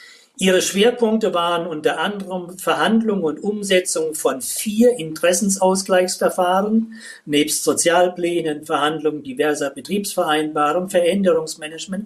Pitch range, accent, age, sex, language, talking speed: 160-225 Hz, German, 50-69, male, German, 85 wpm